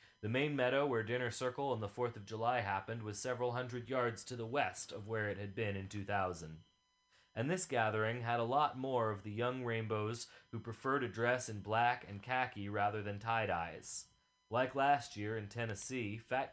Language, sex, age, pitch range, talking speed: English, male, 30-49, 105-125 Hz, 195 wpm